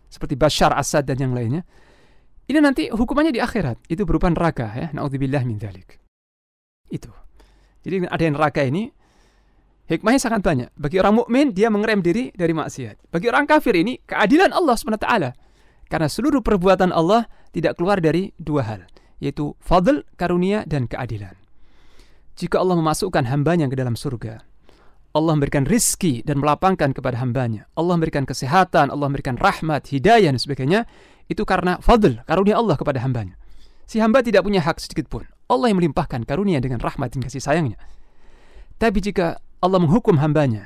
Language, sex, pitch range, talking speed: Indonesian, male, 130-195 Hz, 155 wpm